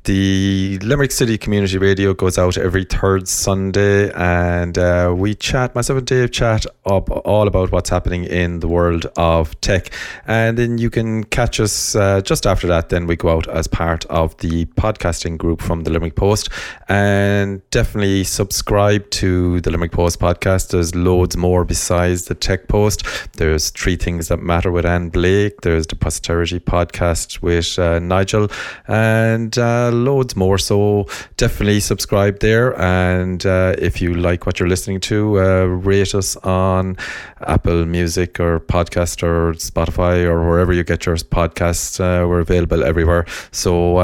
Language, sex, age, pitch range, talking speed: English, male, 30-49, 85-100 Hz, 165 wpm